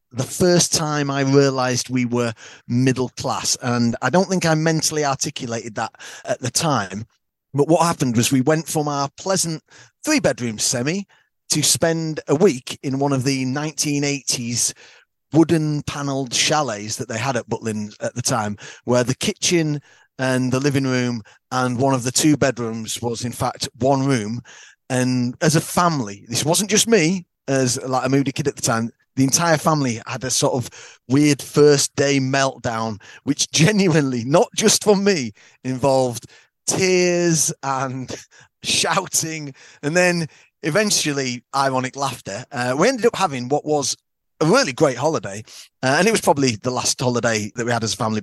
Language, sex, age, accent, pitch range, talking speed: English, male, 30-49, British, 120-150 Hz, 170 wpm